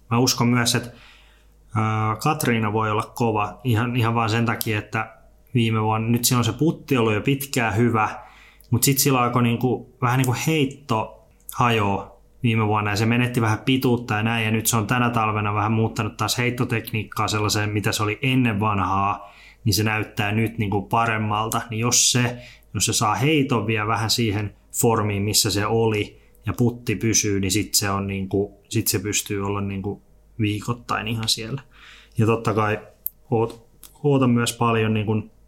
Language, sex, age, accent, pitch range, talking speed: Finnish, male, 20-39, native, 105-120 Hz, 175 wpm